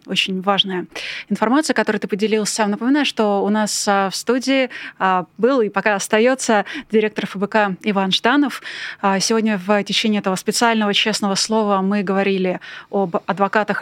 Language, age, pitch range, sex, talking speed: Russian, 20-39, 200-240 Hz, female, 135 wpm